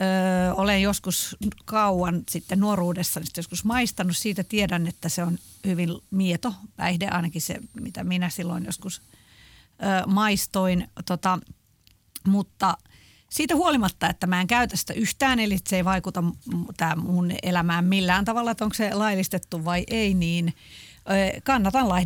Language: Finnish